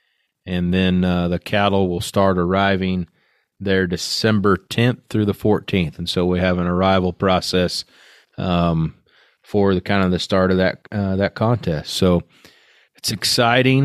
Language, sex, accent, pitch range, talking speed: English, male, American, 90-105 Hz, 155 wpm